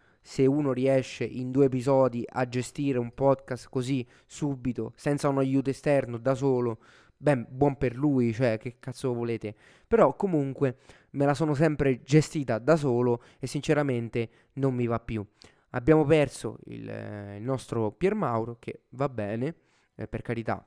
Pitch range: 115-145 Hz